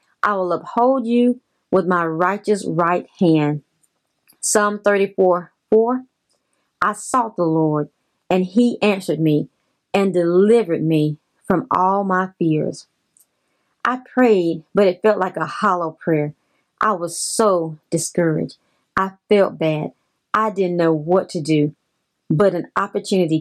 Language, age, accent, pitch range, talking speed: English, 30-49, American, 165-210 Hz, 135 wpm